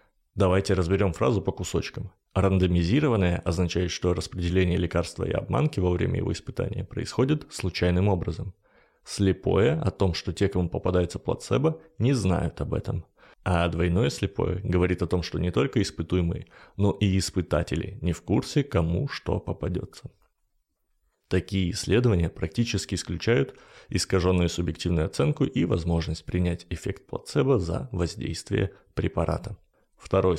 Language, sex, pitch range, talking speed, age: Russian, male, 85-100 Hz, 130 wpm, 30-49